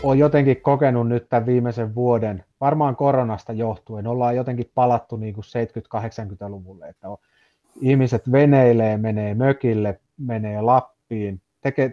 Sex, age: male, 30-49